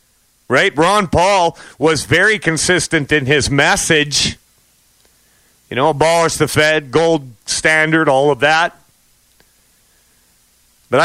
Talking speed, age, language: 110 wpm, 40-59, English